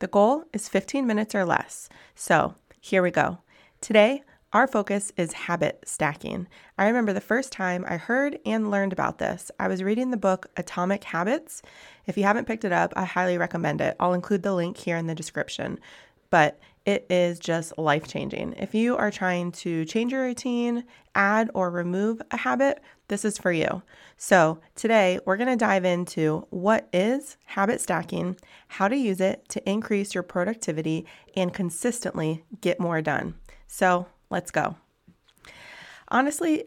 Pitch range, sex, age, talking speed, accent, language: 175-220 Hz, female, 30-49, 165 wpm, American, English